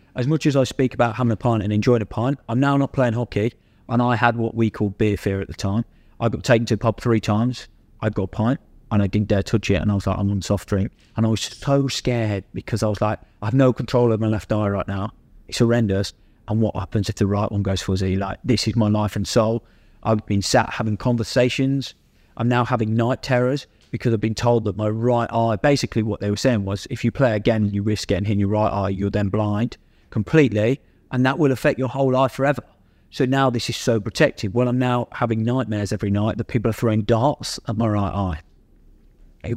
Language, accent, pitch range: English, British, 100-125 Hz